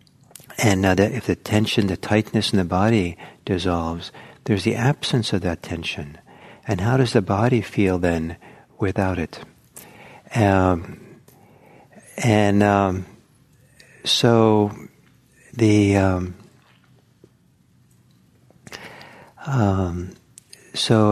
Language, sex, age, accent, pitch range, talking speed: English, male, 60-79, American, 90-115 Hz, 95 wpm